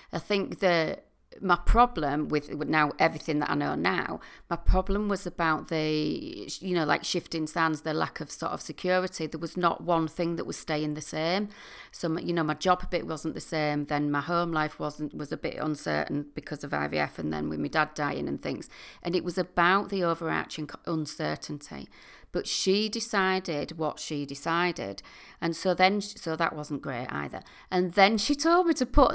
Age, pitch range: 40-59, 155-230 Hz